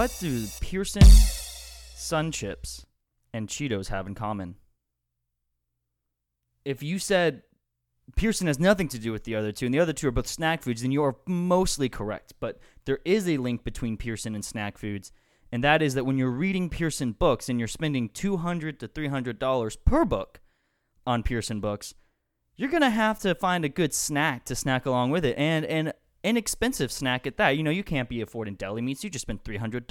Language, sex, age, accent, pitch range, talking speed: English, male, 20-39, American, 100-155 Hz, 195 wpm